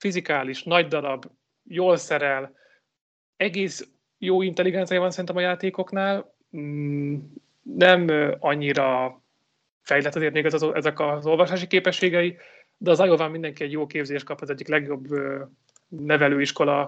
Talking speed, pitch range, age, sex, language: 130 wpm, 145-170 Hz, 30-49, male, Hungarian